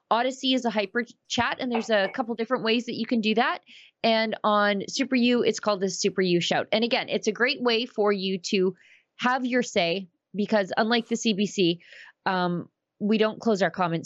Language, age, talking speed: English, 20-39, 205 wpm